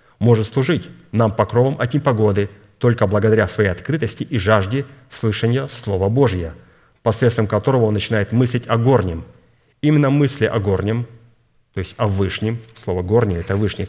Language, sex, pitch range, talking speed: Russian, male, 95-120 Hz, 145 wpm